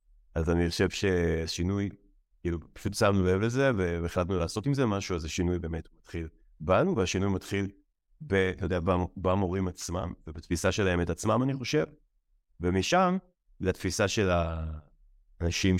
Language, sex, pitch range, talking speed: Hebrew, male, 85-110 Hz, 135 wpm